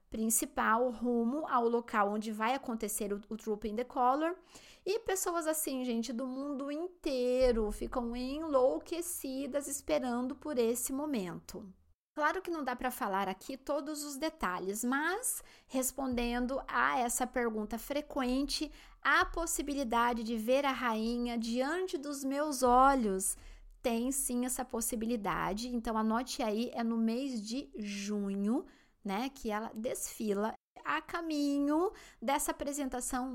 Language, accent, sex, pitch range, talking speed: English, Brazilian, female, 230-290 Hz, 130 wpm